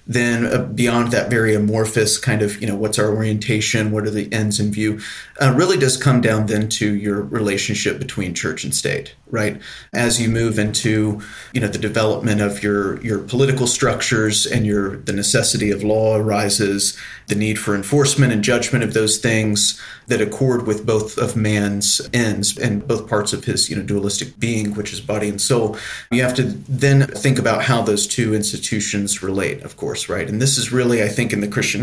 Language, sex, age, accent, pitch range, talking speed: English, male, 30-49, American, 105-120 Hz, 200 wpm